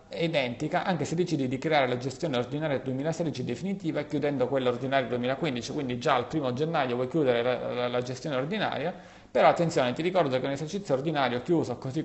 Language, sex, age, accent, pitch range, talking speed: Italian, male, 30-49, native, 125-175 Hz, 185 wpm